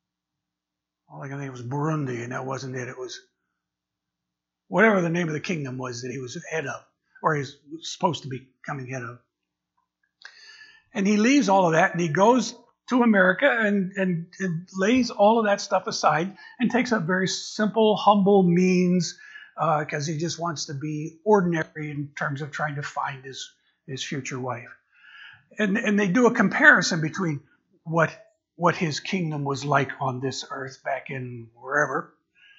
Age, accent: 50-69, American